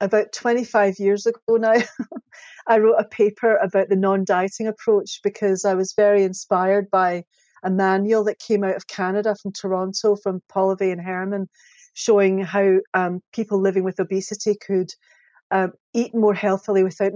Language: English